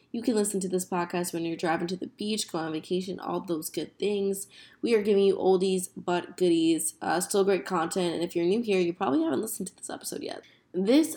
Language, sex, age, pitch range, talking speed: English, female, 20-39, 170-195 Hz, 235 wpm